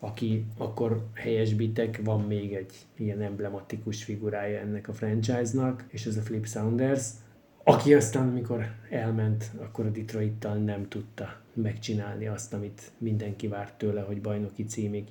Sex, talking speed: male, 145 wpm